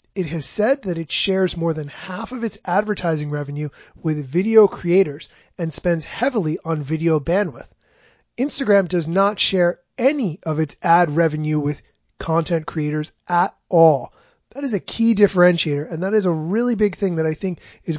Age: 30-49